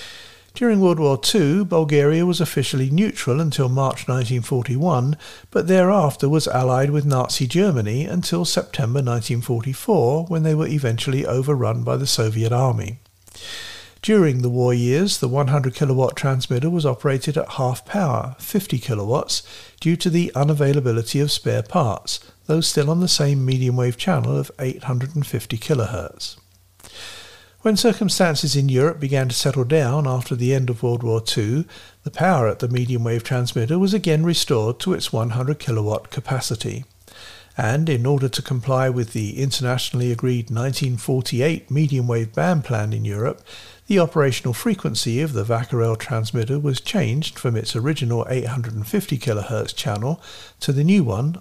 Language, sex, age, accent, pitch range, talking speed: English, male, 50-69, British, 120-155 Hz, 145 wpm